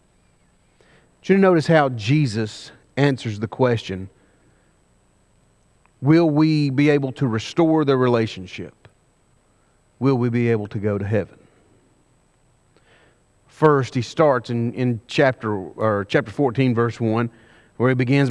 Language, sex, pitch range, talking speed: English, male, 115-160 Hz, 120 wpm